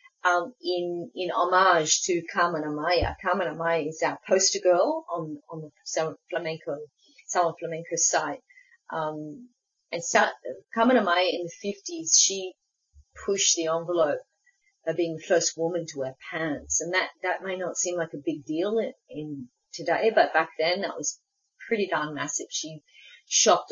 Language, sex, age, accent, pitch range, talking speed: English, female, 30-49, Australian, 165-255 Hz, 160 wpm